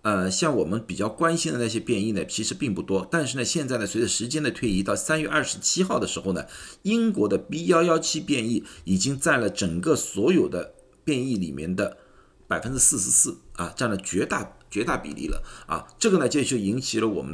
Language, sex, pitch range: Chinese, male, 95-155 Hz